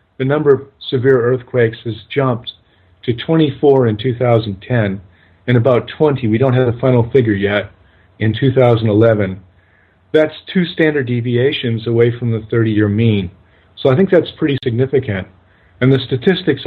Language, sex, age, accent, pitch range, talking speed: English, male, 50-69, American, 105-135 Hz, 150 wpm